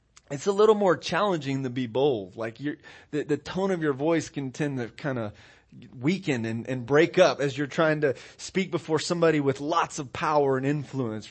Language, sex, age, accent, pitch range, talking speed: English, male, 30-49, American, 135-200 Hz, 205 wpm